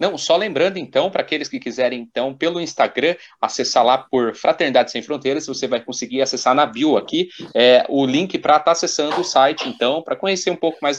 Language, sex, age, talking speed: Portuguese, male, 30-49, 215 wpm